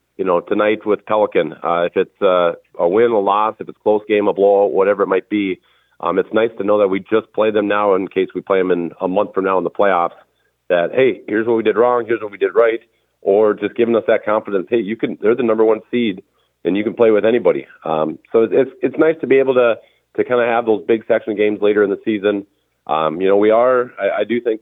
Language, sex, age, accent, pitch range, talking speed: English, male, 40-59, American, 100-120 Hz, 265 wpm